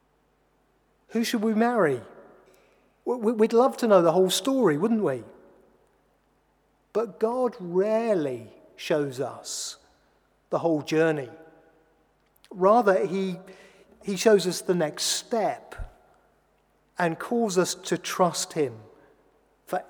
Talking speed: 110 wpm